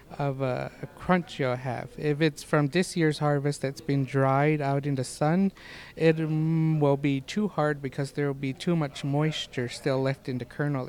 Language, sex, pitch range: English, male, 135-155 Hz